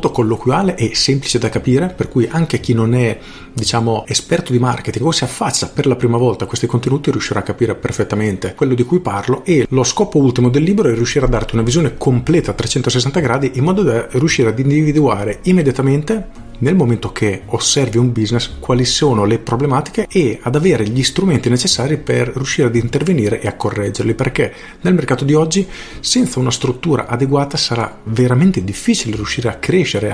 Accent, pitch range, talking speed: native, 115-145 Hz, 190 wpm